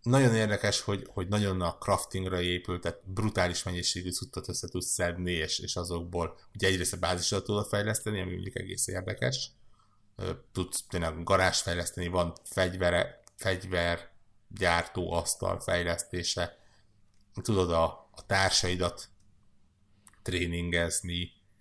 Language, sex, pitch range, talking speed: Hungarian, male, 85-100 Hz, 120 wpm